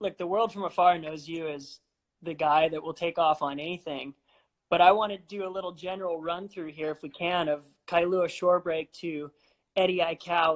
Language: English